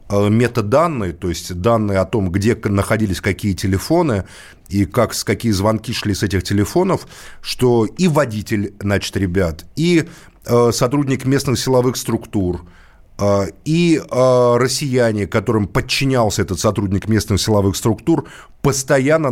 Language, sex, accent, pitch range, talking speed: Russian, male, native, 100-135 Hz, 115 wpm